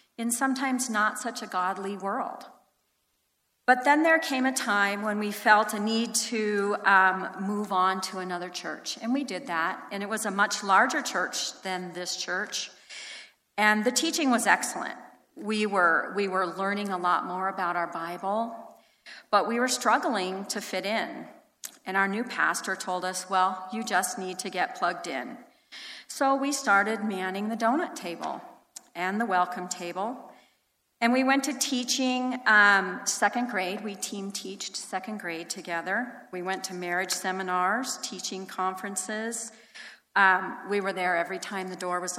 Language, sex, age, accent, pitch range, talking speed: English, female, 40-59, American, 185-230 Hz, 165 wpm